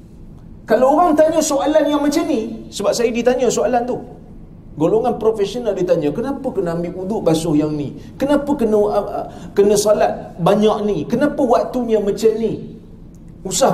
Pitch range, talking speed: 230-290 Hz, 150 wpm